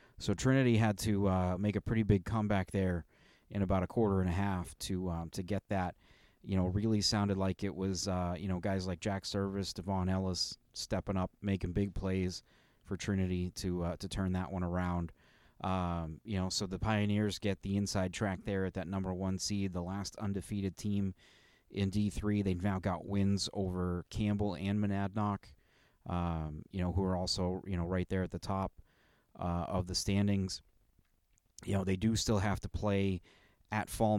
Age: 30-49